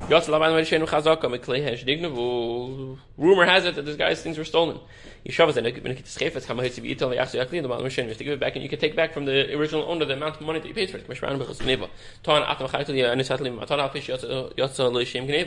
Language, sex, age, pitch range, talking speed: English, male, 20-39, 125-155 Hz, 80 wpm